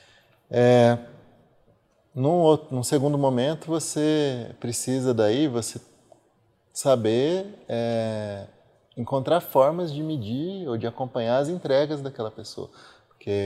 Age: 20-39